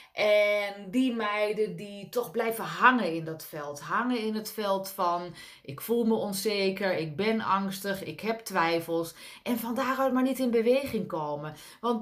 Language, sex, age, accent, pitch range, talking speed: Dutch, female, 30-49, Dutch, 195-270 Hz, 170 wpm